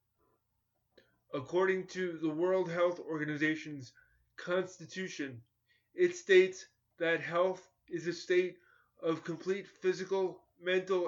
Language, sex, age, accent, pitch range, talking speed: English, male, 20-39, American, 150-175 Hz, 95 wpm